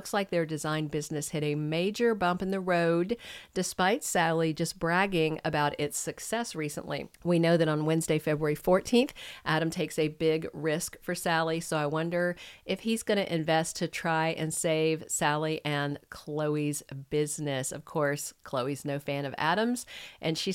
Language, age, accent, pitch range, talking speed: English, 50-69, American, 155-180 Hz, 170 wpm